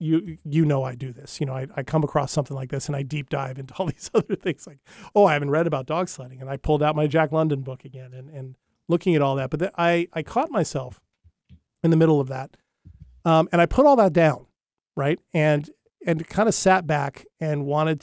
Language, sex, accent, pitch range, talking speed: English, male, American, 135-160 Hz, 245 wpm